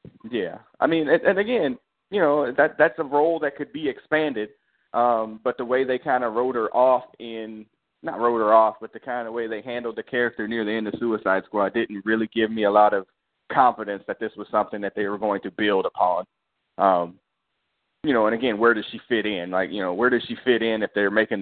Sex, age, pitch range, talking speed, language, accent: male, 30-49, 100-120 Hz, 240 wpm, English, American